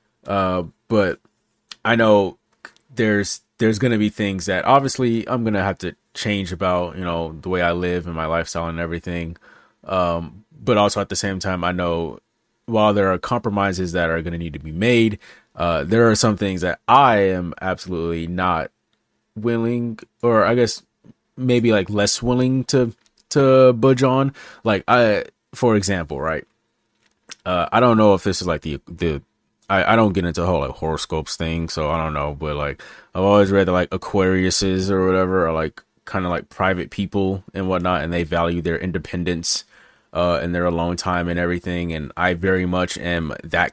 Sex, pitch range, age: male, 85-105 Hz, 30-49